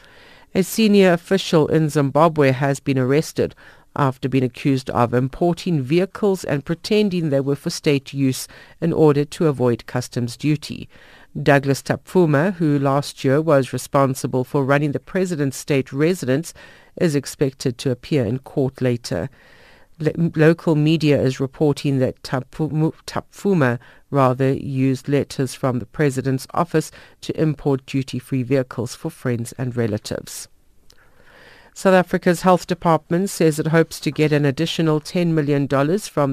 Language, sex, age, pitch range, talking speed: English, female, 50-69, 130-155 Hz, 135 wpm